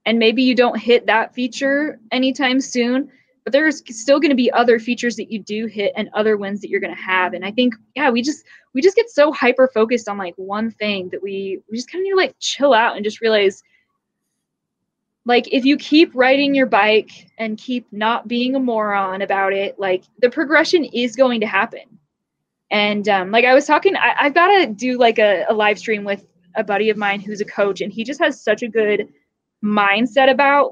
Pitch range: 210-260 Hz